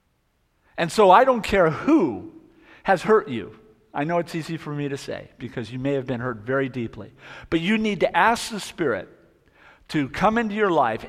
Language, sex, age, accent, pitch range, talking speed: English, male, 50-69, American, 145-210 Hz, 200 wpm